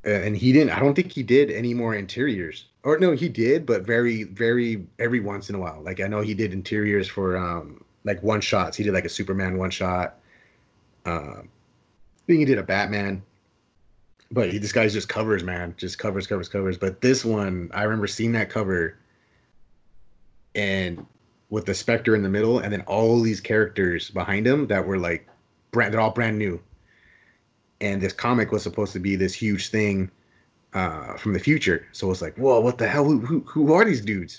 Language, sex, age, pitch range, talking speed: English, male, 30-49, 95-115 Hz, 200 wpm